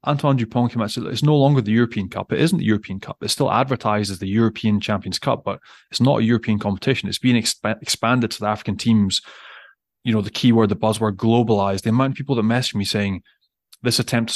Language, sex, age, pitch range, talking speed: English, male, 20-39, 105-125 Hz, 240 wpm